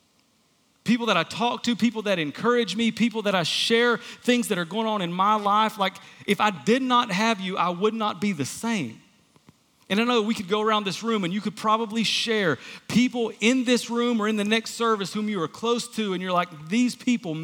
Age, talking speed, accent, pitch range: 40-59, 235 wpm, American, 165-225 Hz